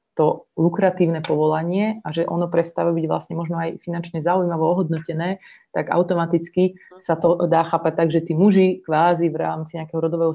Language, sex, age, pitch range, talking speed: Slovak, female, 30-49, 165-185 Hz, 170 wpm